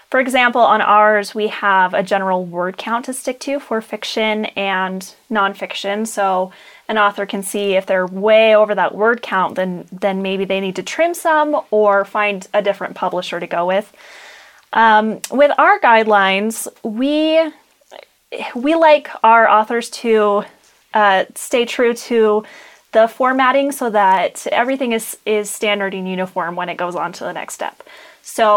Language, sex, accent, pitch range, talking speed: English, female, American, 195-255 Hz, 165 wpm